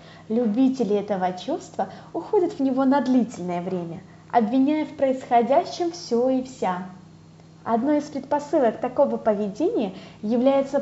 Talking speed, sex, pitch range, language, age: 115 wpm, female, 205-285 Hz, Russian, 20-39